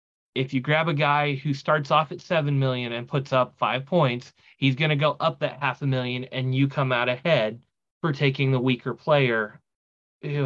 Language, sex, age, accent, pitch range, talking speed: English, male, 30-49, American, 130-160 Hz, 205 wpm